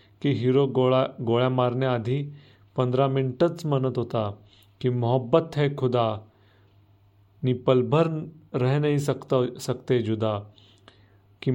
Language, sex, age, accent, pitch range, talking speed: Marathi, male, 40-59, native, 110-135 Hz, 105 wpm